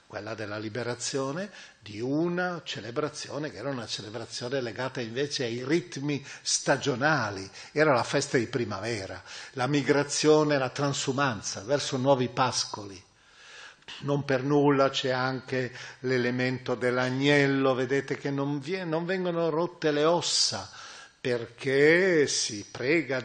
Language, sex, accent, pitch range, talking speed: Italian, male, native, 120-145 Hz, 115 wpm